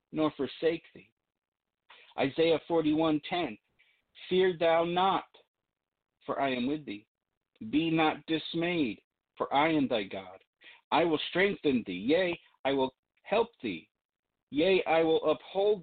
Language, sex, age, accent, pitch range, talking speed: English, male, 50-69, American, 125-180 Hz, 130 wpm